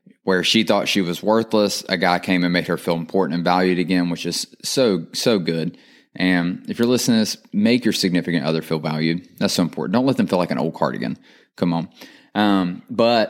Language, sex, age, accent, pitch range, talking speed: English, male, 20-39, American, 90-105 Hz, 220 wpm